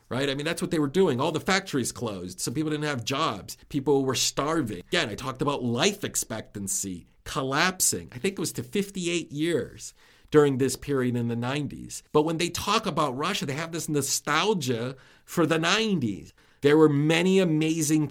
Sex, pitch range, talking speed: male, 115-150 Hz, 190 wpm